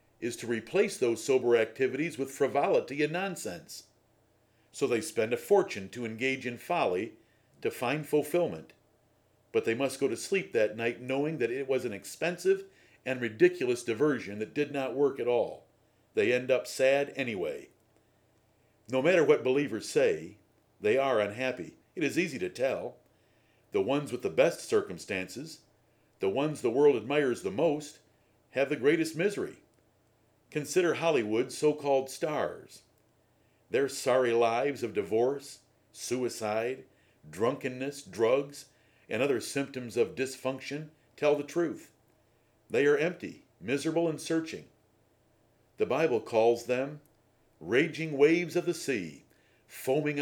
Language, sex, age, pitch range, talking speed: English, male, 50-69, 115-170 Hz, 140 wpm